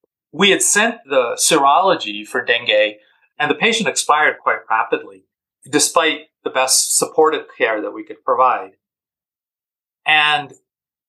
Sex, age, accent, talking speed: male, 40-59, American, 125 wpm